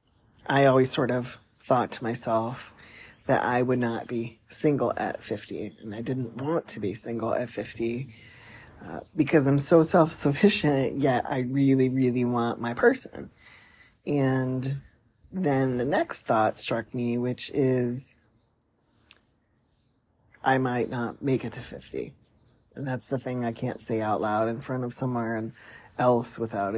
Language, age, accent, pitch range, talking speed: English, 30-49, American, 115-135 Hz, 150 wpm